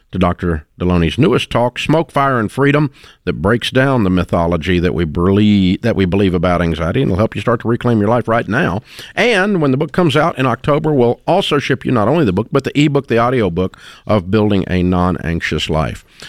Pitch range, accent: 95-120 Hz, American